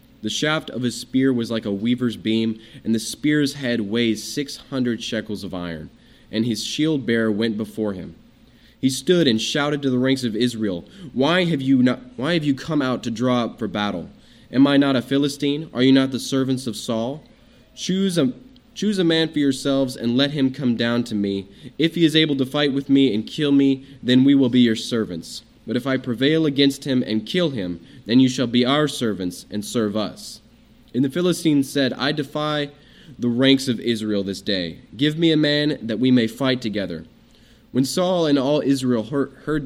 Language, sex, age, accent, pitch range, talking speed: English, male, 20-39, American, 115-140 Hz, 205 wpm